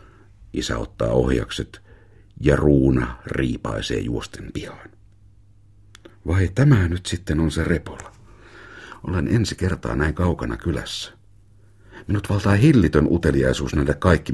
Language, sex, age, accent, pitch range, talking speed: Finnish, male, 60-79, native, 75-100 Hz, 115 wpm